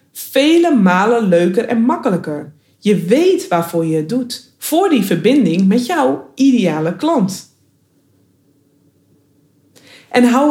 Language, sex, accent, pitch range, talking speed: Dutch, female, Dutch, 170-255 Hz, 115 wpm